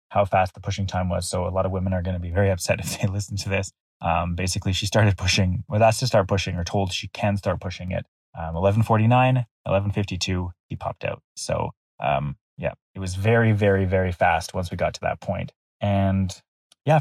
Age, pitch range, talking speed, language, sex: 20-39, 95-105 Hz, 215 wpm, English, male